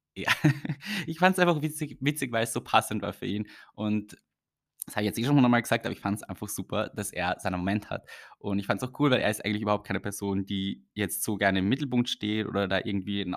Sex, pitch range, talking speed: male, 95-115 Hz, 255 wpm